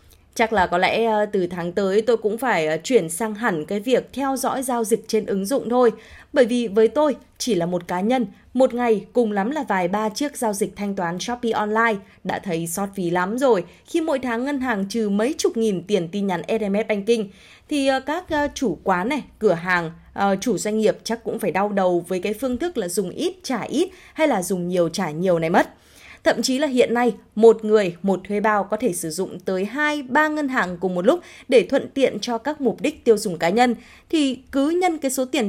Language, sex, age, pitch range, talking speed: Vietnamese, female, 20-39, 195-265 Hz, 230 wpm